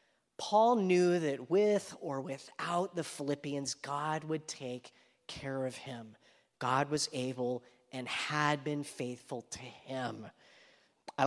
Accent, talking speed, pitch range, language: American, 130 wpm, 130-160 Hz, English